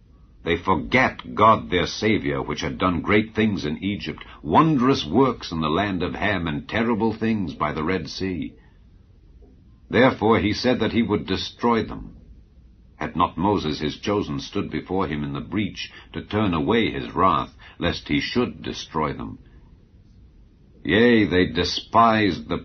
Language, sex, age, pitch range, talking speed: English, male, 60-79, 80-110 Hz, 155 wpm